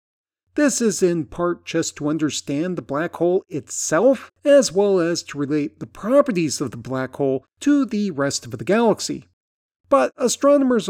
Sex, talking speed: male, 165 wpm